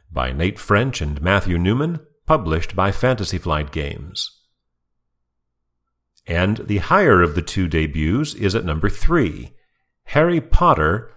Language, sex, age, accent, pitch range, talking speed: English, male, 40-59, American, 80-125 Hz, 130 wpm